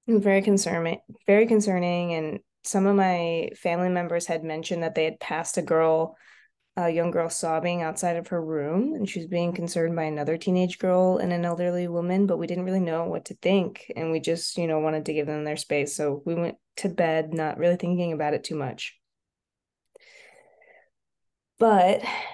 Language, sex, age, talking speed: English, female, 20-39, 190 wpm